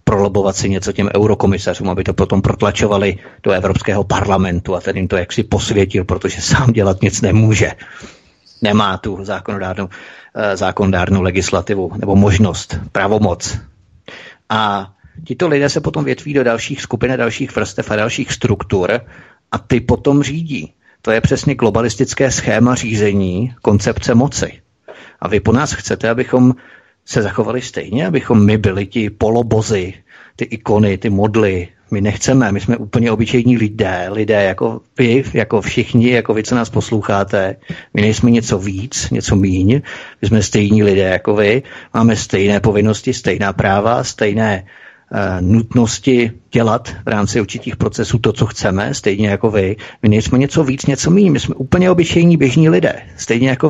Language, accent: Czech, native